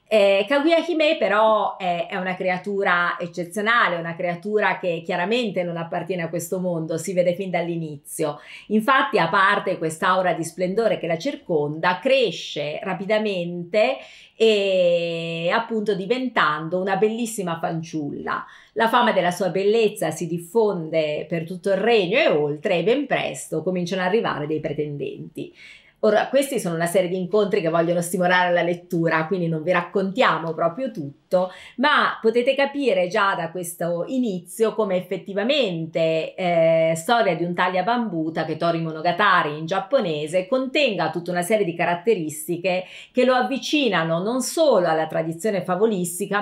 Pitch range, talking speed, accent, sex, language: 170-215 Hz, 145 wpm, native, female, Italian